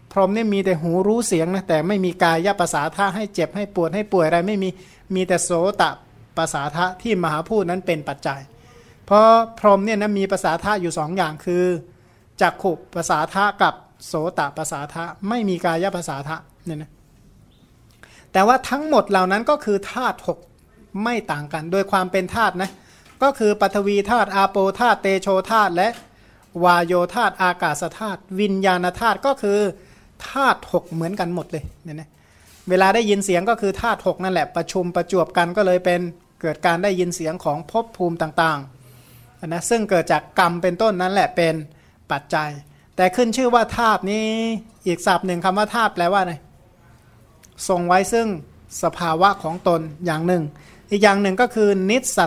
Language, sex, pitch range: Thai, male, 165-205 Hz